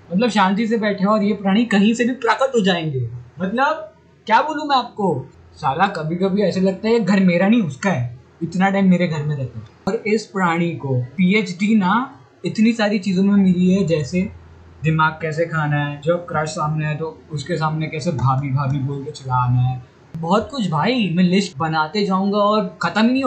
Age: 20-39